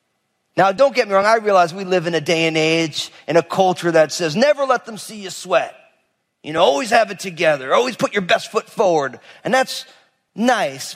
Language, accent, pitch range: English, American, 125-185 Hz